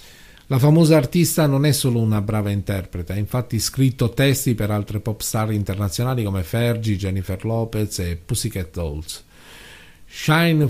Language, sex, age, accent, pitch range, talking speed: Italian, male, 50-69, native, 100-135 Hz, 140 wpm